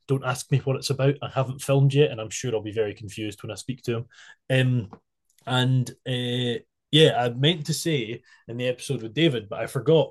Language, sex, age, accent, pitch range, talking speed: English, male, 20-39, British, 110-135 Hz, 225 wpm